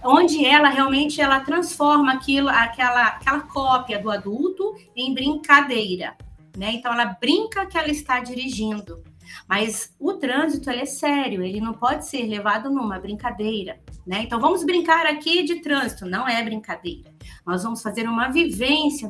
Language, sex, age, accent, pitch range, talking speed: Portuguese, female, 30-49, Brazilian, 205-295 Hz, 155 wpm